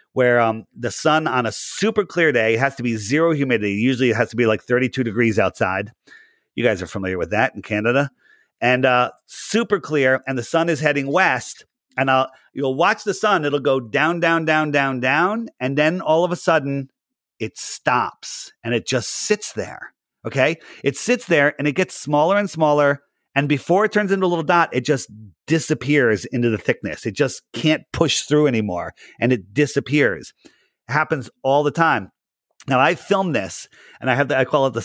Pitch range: 125-165 Hz